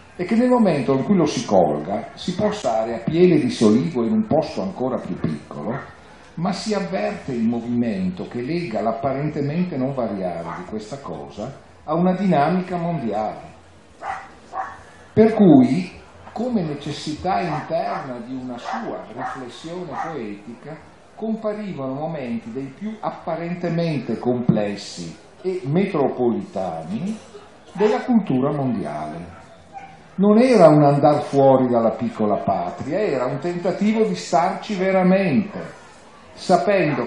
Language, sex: Italian, male